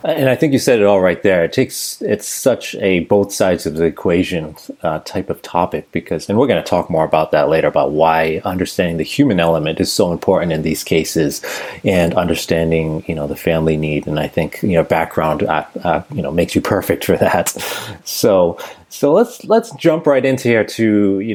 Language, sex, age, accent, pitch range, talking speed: English, male, 30-49, American, 80-105 Hz, 215 wpm